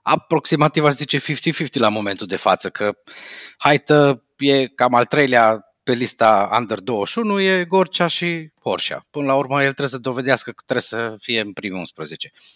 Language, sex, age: Romanian, male, 30-49